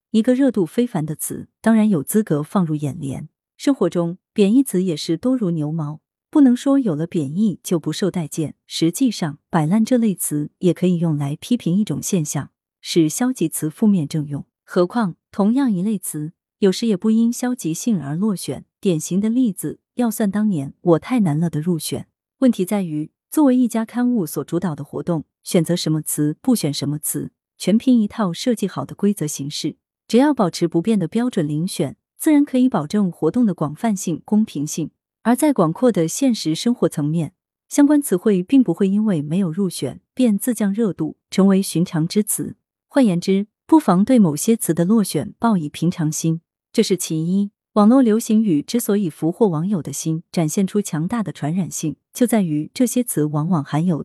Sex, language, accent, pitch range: female, Chinese, native, 155-225 Hz